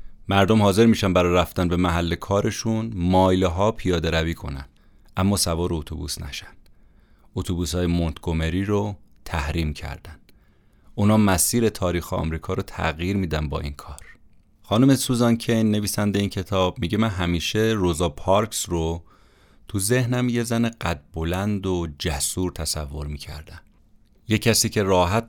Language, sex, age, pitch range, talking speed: Persian, male, 30-49, 85-105 Hz, 140 wpm